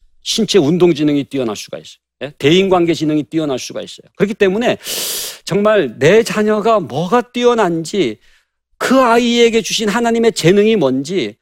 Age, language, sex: 40-59, Korean, male